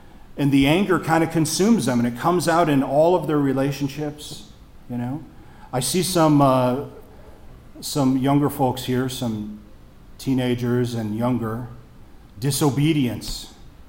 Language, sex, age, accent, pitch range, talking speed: English, male, 40-59, American, 120-160 Hz, 135 wpm